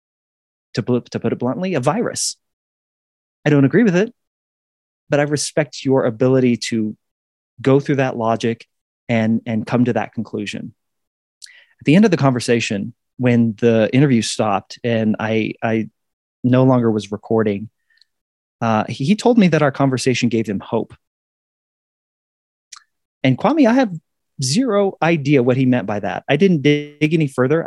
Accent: American